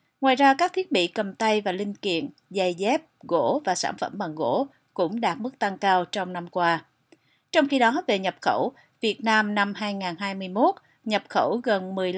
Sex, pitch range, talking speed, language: female, 180-240 Hz, 190 wpm, Vietnamese